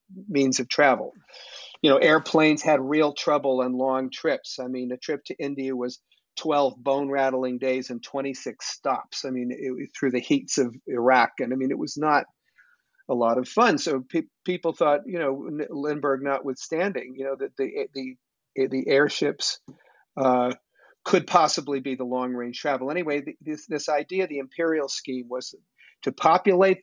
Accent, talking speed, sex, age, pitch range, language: American, 175 wpm, male, 50-69, 130-155 Hz, English